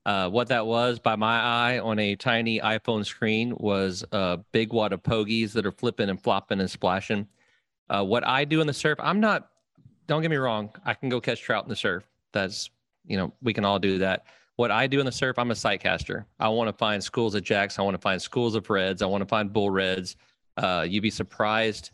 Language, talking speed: English, 240 wpm